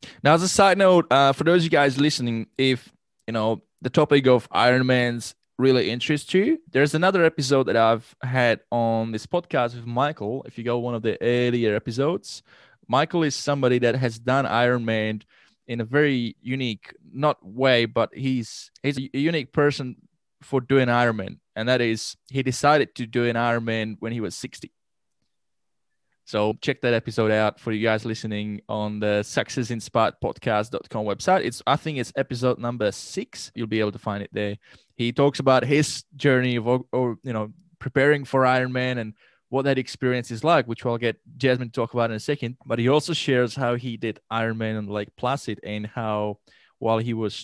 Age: 20-39